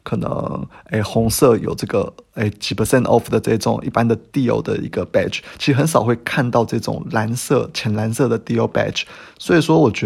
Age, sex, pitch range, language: 20-39, male, 110-125 Hz, Chinese